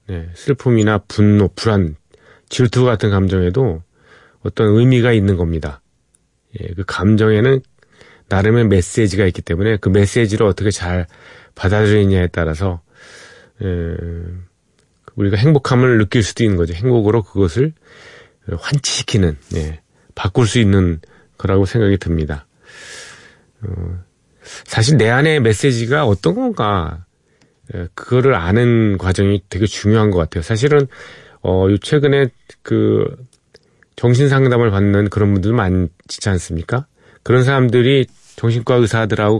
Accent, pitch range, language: native, 90-120 Hz, Korean